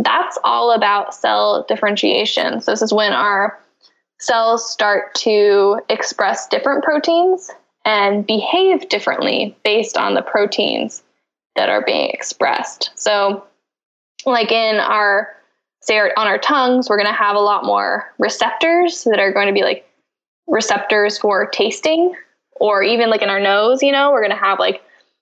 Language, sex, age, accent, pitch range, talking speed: English, female, 10-29, American, 205-255 Hz, 155 wpm